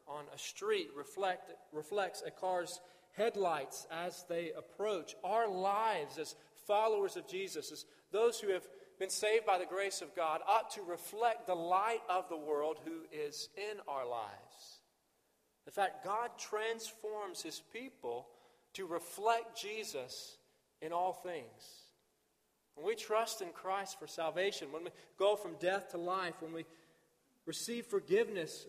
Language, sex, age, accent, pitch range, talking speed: English, male, 40-59, American, 155-210 Hz, 150 wpm